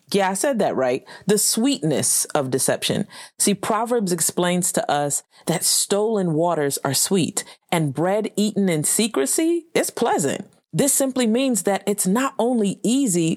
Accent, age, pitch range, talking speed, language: American, 30-49, 170-225 Hz, 155 wpm, English